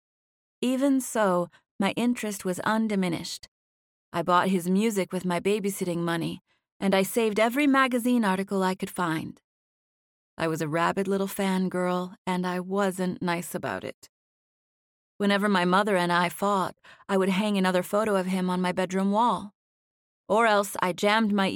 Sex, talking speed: female, 160 wpm